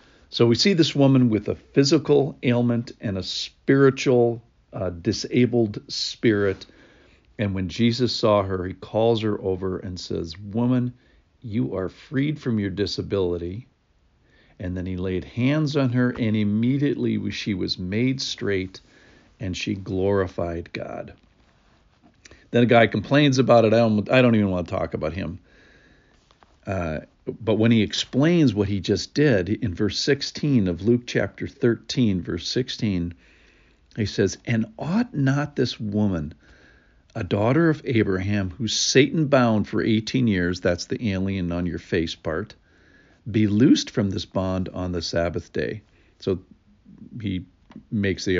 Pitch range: 95-125 Hz